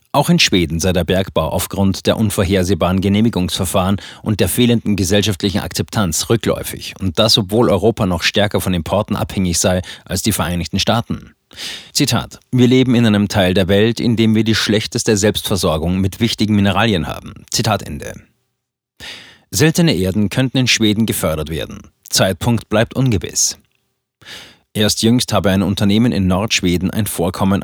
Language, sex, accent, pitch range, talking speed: German, male, German, 95-115 Hz, 150 wpm